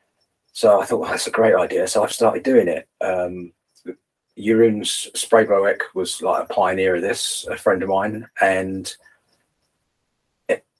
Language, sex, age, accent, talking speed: English, male, 40-59, British, 150 wpm